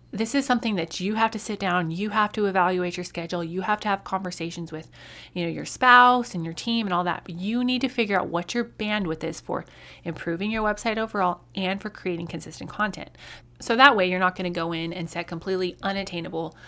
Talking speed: 225 wpm